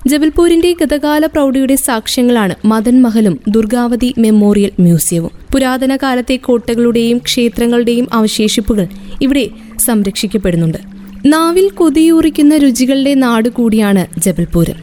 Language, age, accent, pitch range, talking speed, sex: Malayalam, 20-39, native, 215-265 Hz, 85 wpm, female